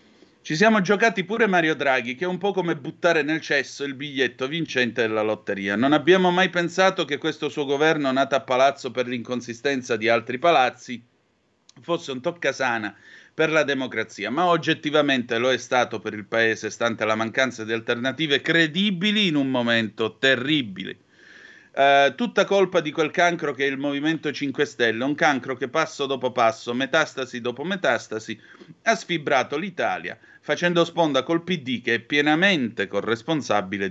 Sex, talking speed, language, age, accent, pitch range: male, 160 wpm, Italian, 30-49, native, 120-160 Hz